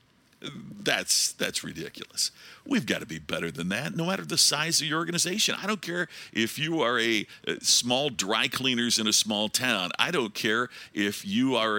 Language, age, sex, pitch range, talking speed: English, 50-69, male, 105-155 Hz, 190 wpm